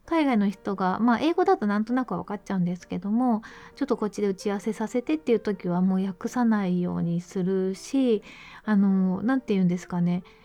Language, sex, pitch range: Japanese, female, 195-270 Hz